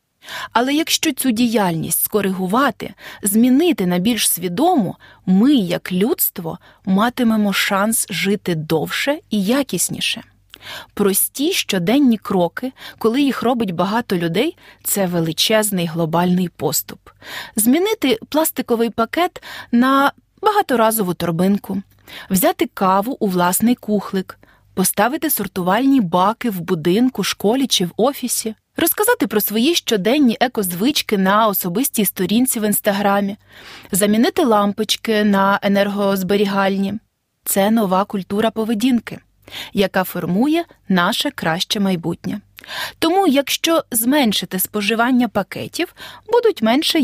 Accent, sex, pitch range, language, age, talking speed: native, female, 195-255 Hz, Ukrainian, 30-49, 100 wpm